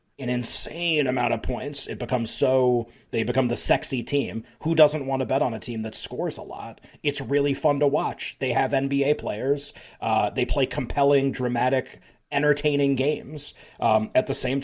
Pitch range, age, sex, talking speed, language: 120-140 Hz, 30-49, male, 185 wpm, English